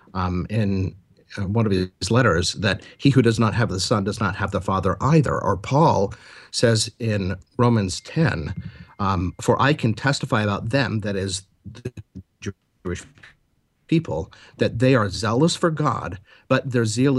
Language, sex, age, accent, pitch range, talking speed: English, male, 50-69, American, 105-140 Hz, 165 wpm